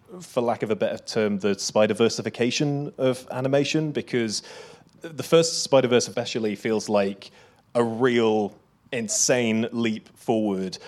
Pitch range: 110-130 Hz